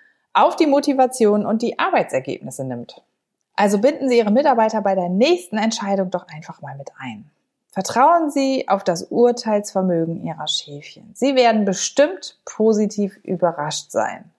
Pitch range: 170-245 Hz